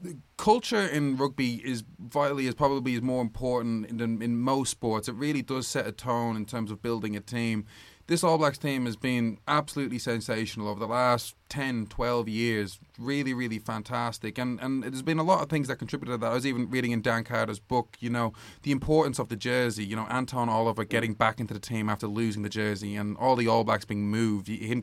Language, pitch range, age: English, 110-135 Hz, 20-39